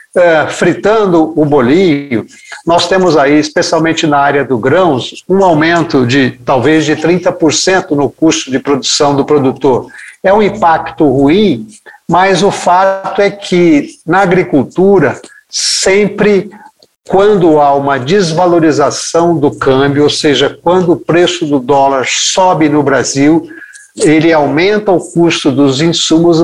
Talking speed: 130 wpm